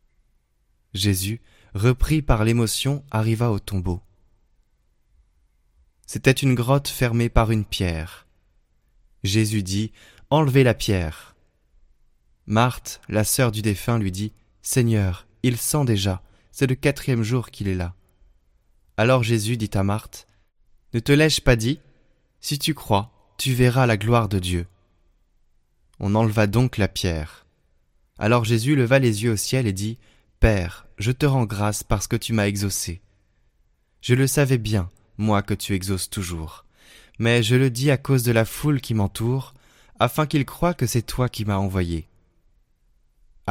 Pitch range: 95-125 Hz